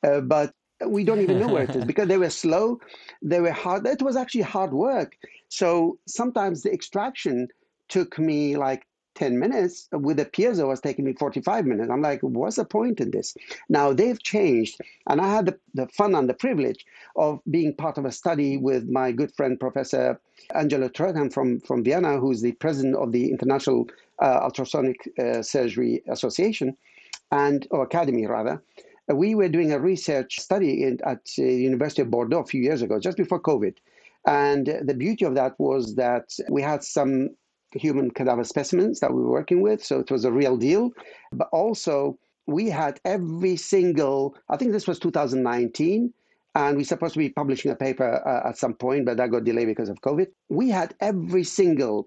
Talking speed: 190 wpm